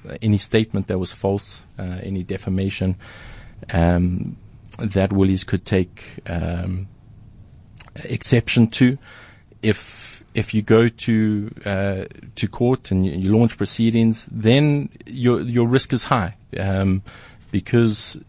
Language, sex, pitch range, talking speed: English, male, 100-120 Hz, 120 wpm